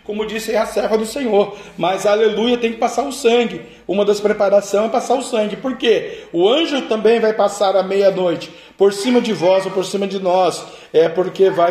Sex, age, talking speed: male, 40-59, 210 wpm